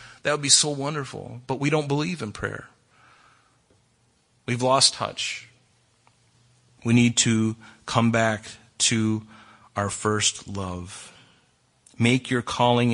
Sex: male